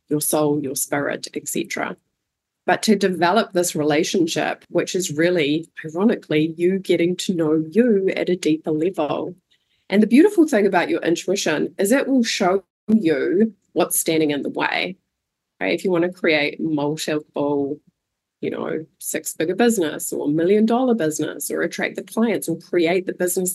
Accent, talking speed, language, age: Australian, 165 wpm, English, 20-39